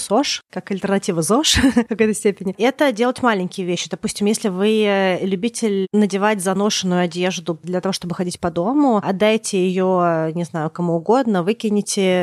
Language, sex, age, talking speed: Russian, female, 30-49, 150 wpm